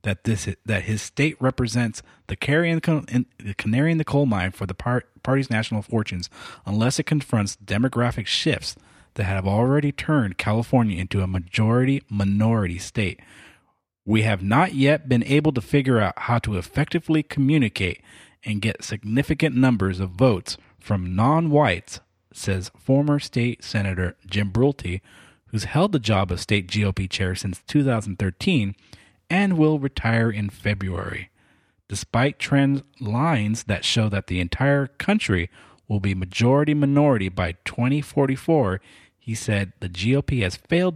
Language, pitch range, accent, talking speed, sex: English, 95-130 Hz, American, 135 wpm, male